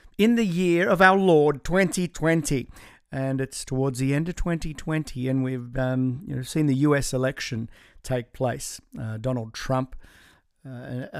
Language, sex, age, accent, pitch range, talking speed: English, male, 50-69, Australian, 130-165 Hz, 165 wpm